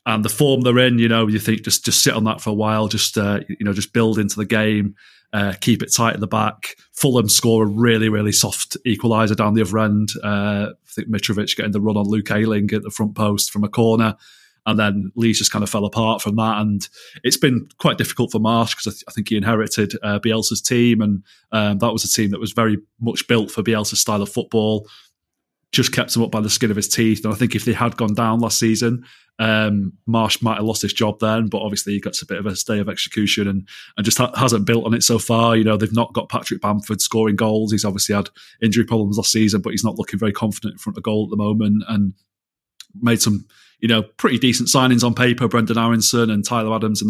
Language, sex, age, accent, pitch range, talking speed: English, male, 30-49, British, 105-115 Hz, 255 wpm